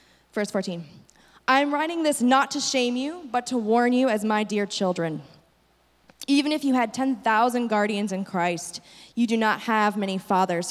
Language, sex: English, female